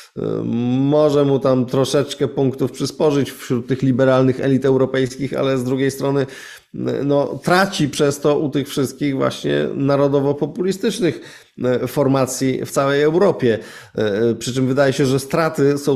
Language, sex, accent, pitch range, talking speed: Polish, male, native, 125-155 Hz, 130 wpm